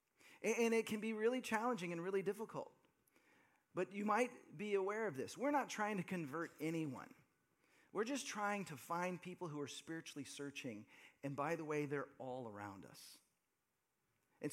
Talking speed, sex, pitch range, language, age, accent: 170 wpm, male, 145-215 Hz, English, 40-59, American